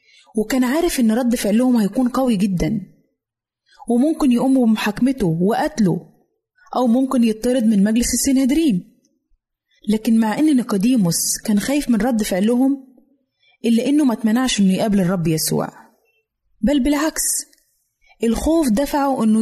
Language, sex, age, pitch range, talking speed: Arabic, female, 20-39, 215-265 Hz, 125 wpm